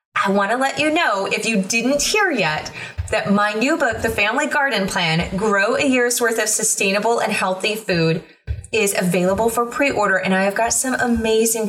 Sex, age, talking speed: female, 20-39, 195 wpm